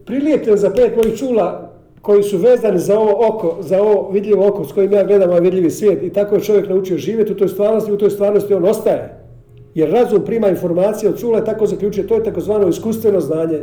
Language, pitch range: Croatian, 180-220 Hz